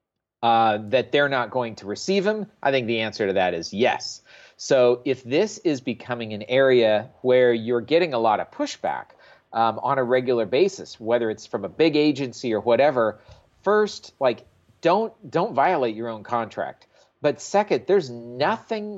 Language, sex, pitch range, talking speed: English, male, 115-155 Hz, 175 wpm